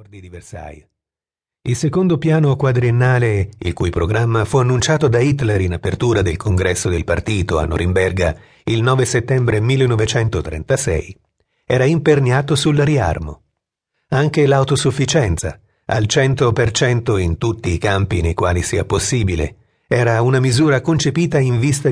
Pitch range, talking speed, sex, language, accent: 100-140 Hz, 130 wpm, male, Italian, native